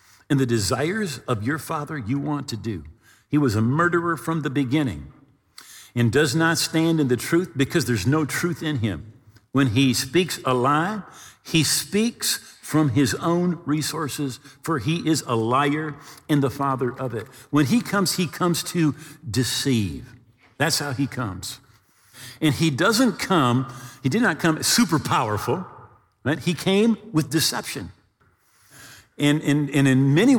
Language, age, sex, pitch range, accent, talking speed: English, 50-69, male, 125-175 Hz, American, 160 wpm